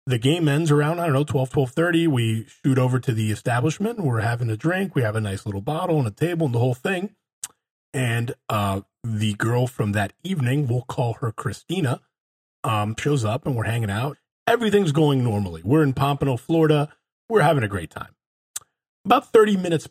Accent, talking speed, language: American, 195 wpm, English